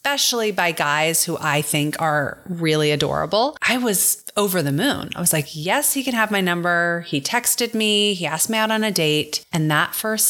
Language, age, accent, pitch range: English, 30-49, American, 160-220 Hz